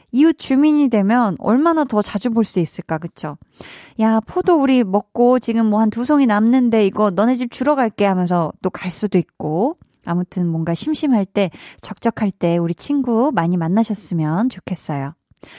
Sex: female